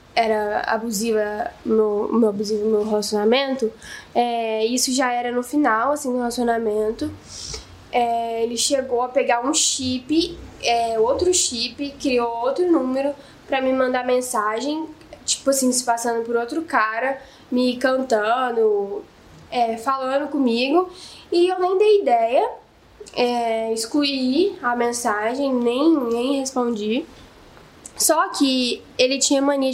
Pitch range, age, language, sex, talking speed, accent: 235-320 Hz, 10-29, Portuguese, female, 125 wpm, Brazilian